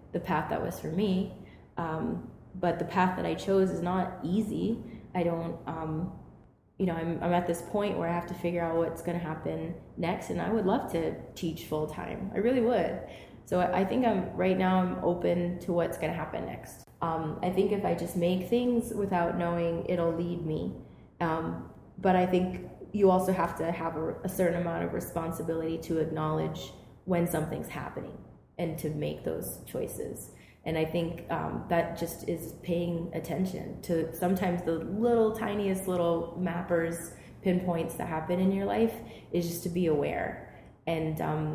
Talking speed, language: 185 wpm, English